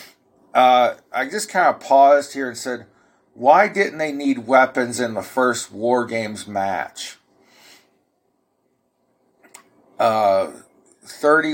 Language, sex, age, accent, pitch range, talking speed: English, male, 50-69, American, 120-145 Hz, 115 wpm